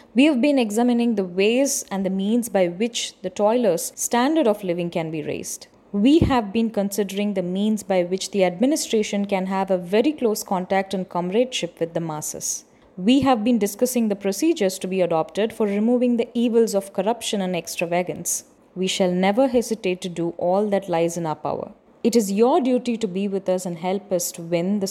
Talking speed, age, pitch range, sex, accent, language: 200 wpm, 20-39, 185-240 Hz, female, native, Tamil